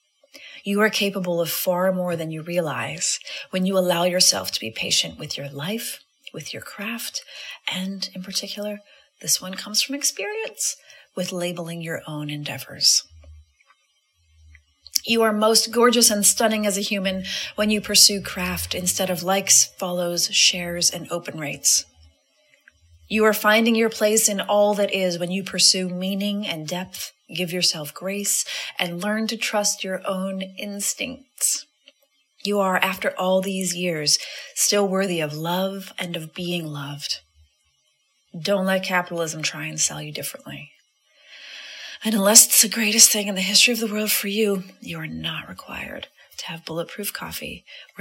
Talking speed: 155 wpm